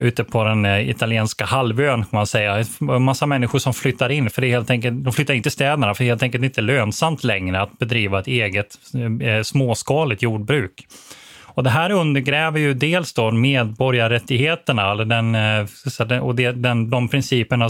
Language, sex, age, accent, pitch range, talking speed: Swedish, male, 20-39, native, 115-140 Hz, 170 wpm